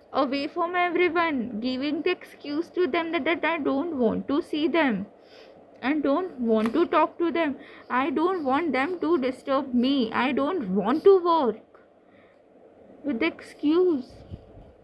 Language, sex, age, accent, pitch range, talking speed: Hindi, female, 20-39, native, 245-340 Hz, 160 wpm